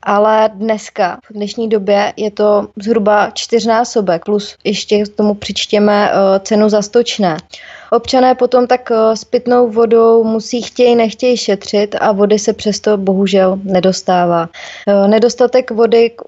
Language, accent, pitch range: Czech, native, 200-225 Hz